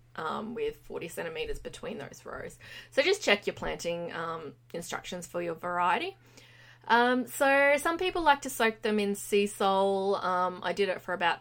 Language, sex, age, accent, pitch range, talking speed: English, female, 20-39, Australian, 175-250 Hz, 180 wpm